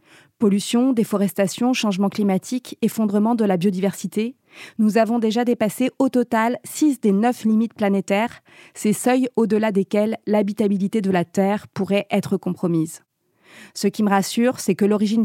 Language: French